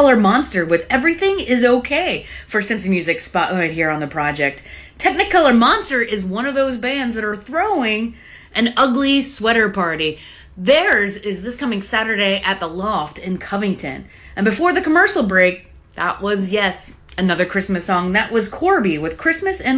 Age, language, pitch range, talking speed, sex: 30-49, English, 185-285 Hz, 165 wpm, female